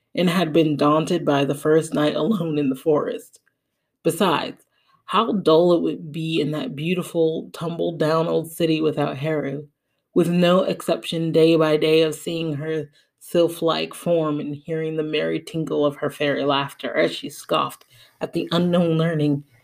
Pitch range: 145-175 Hz